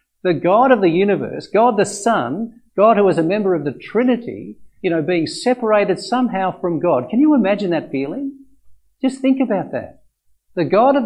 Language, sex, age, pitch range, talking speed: English, male, 50-69, 175-240 Hz, 190 wpm